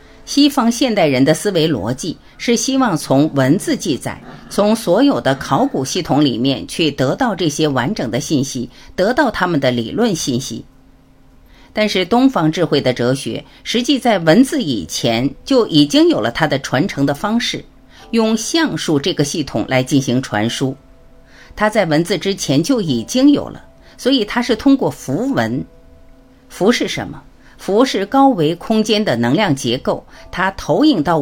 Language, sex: Chinese, female